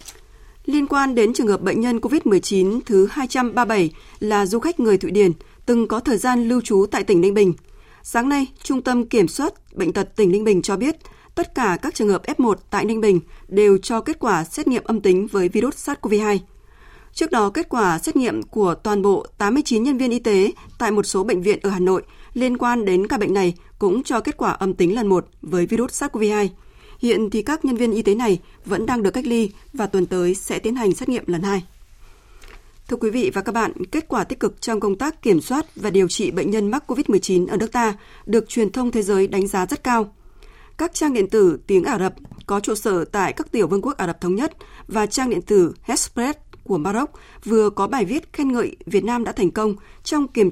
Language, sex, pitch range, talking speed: Vietnamese, female, 195-255 Hz, 230 wpm